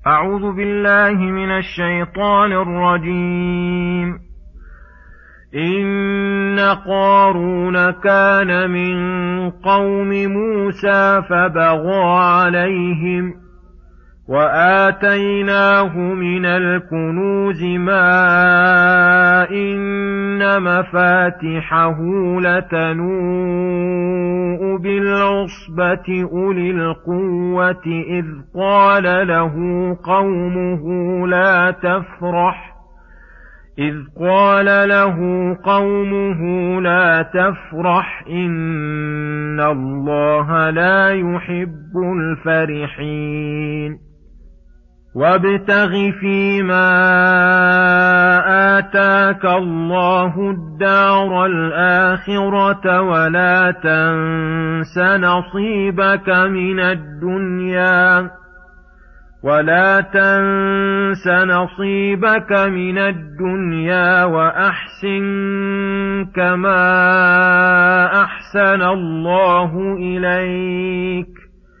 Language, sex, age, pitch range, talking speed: Arabic, male, 40-59, 175-195 Hz, 50 wpm